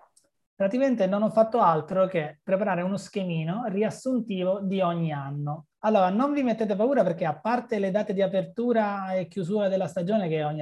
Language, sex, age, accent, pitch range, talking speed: Italian, male, 30-49, native, 170-220 Hz, 175 wpm